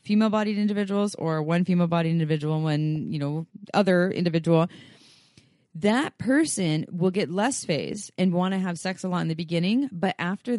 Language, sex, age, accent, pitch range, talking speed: English, female, 30-49, American, 175-220 Hz, 165 wpm